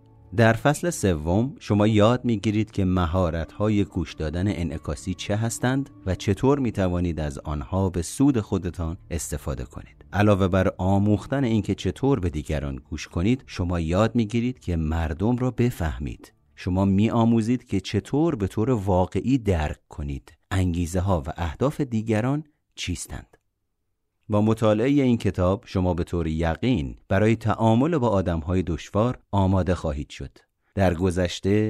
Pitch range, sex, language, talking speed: 85-110 Hz, male, Persian, 145 wpm